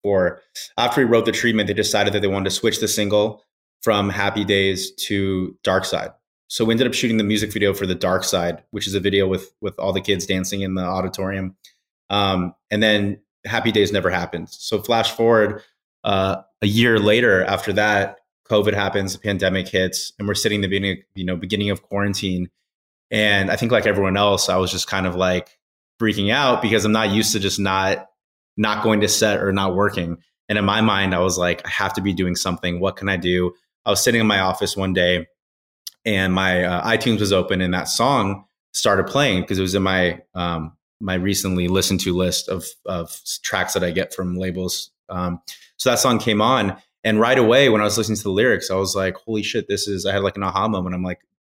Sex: male